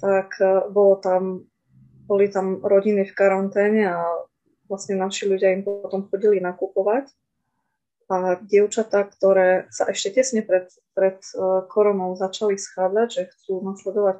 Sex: female